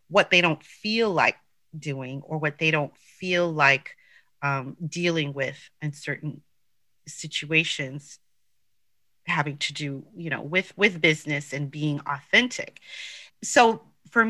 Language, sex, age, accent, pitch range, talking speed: English, female, 30-49, American, 150-200 Hz, 130 wpm